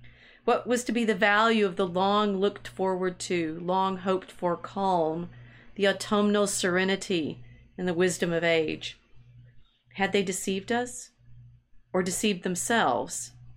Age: 40-59